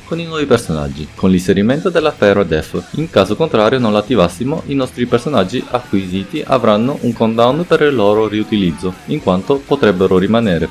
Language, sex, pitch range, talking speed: Italian, male, 85-130 Hz, 165 wpm